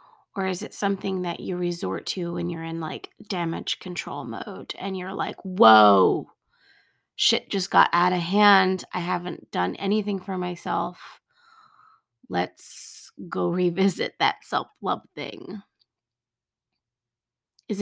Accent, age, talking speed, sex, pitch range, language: American, 20-39, 130 wpm, female, 160-200 Hz, English